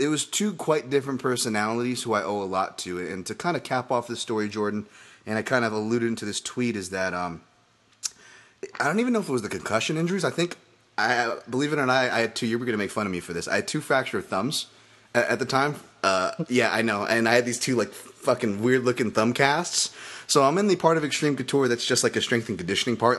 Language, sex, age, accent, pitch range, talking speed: English, male, 30-49, American, 110-140 Hz, 265 wpm